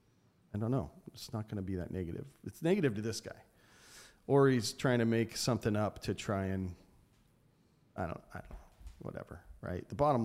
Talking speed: 200 wpm